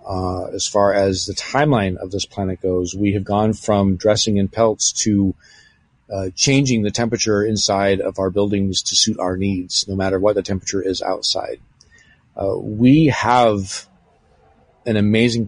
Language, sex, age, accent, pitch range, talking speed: English, male, 40-59, American, 95-110 Hz, 165 wpm